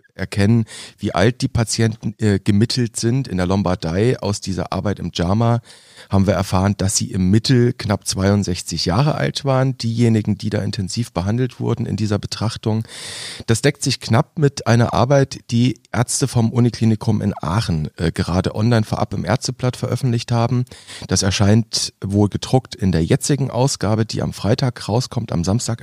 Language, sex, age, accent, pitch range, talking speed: German, male, 40-59, German, 100-120 Hz, 165 wpm